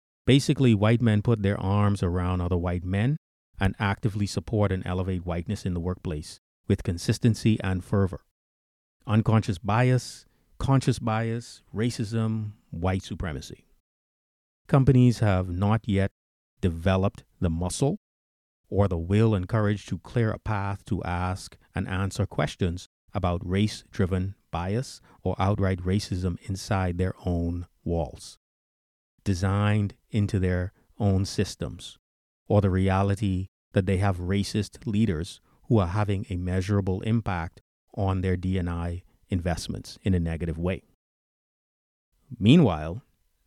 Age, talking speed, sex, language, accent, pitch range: 40-59, 125 wpm, male, English, American, 90-105 Hz